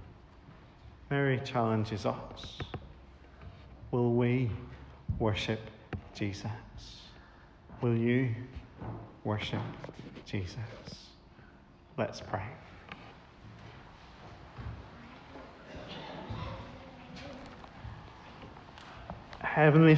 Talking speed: 40 wpm